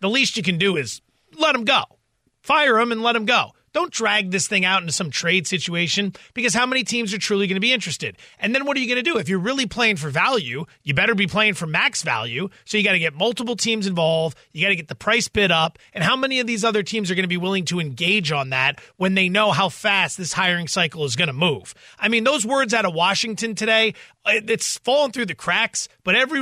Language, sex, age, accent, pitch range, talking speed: English, male, 30-49, American, 170-225 Hz, 260 wpm